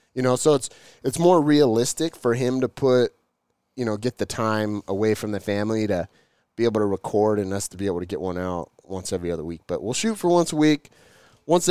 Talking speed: 235 wpm